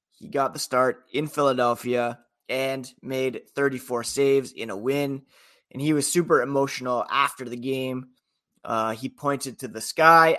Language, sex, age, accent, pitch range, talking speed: English, male, 20-39, American, 125-150 Hz, 155 wpm